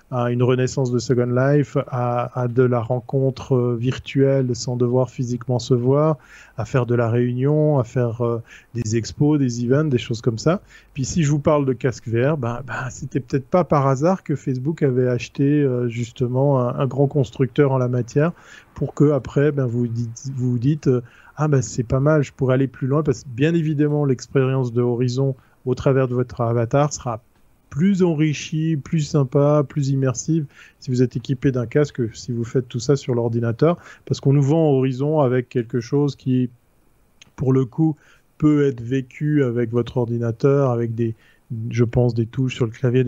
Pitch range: 120-140 Hz